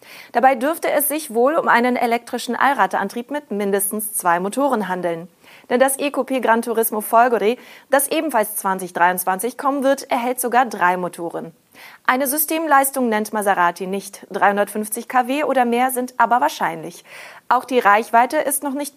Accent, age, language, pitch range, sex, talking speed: German, 30-49, German, 195-265 Hz, female, 150 wpm